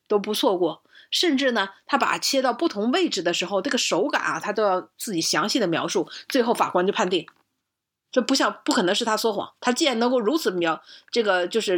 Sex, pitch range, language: female, 190-270 Hz, Chinese